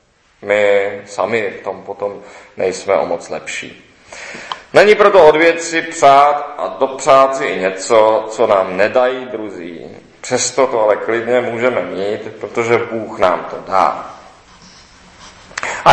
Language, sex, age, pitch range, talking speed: Czech, male, 40-59, 100-125 Hz, 130 wpm